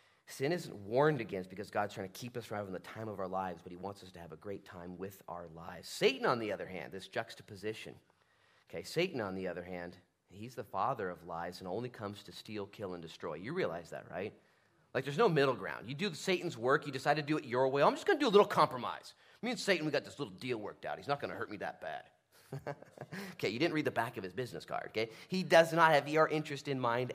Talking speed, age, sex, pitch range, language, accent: 265 wpm, 30-49, male, 95-145 Hz, English, American